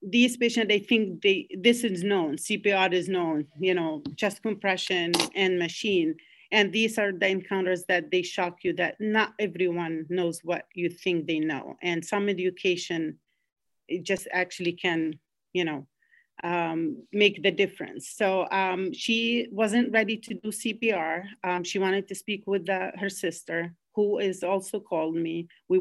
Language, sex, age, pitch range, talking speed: English, female, 40-59, 175-200 Hz, 165 wpm